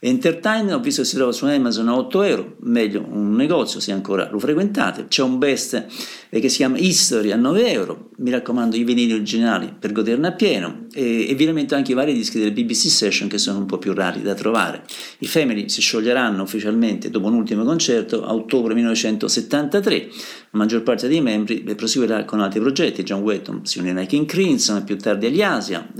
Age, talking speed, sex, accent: 50-69, 200 wpm, male, native